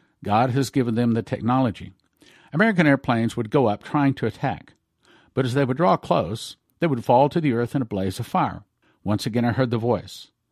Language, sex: English, male